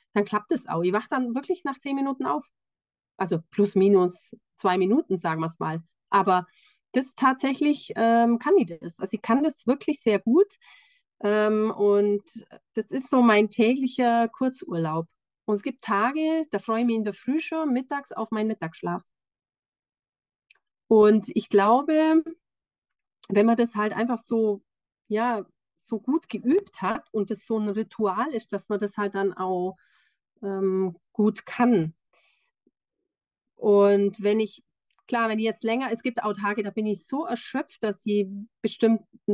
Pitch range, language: 195-245 Hz, German